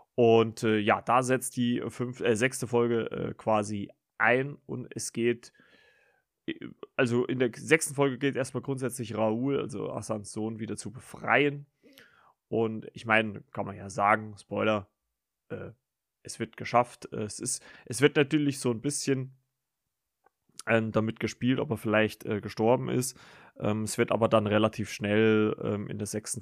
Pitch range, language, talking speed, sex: 110-125 Hz, German, 160 wpm, male